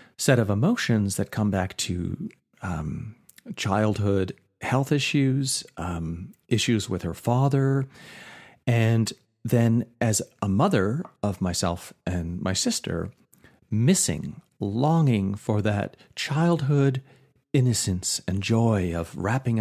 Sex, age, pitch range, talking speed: male, 40-59, 100-140 Hz, 110 wpm